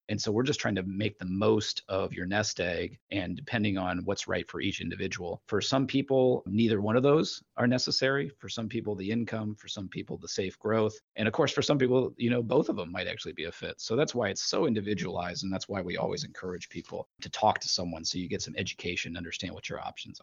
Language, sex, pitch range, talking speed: English, male, 95-115 Hz, 250 wpm